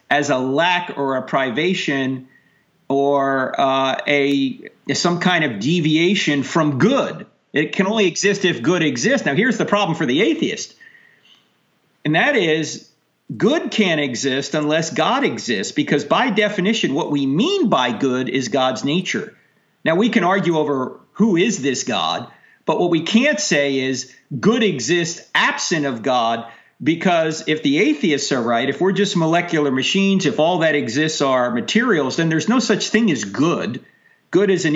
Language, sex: English, male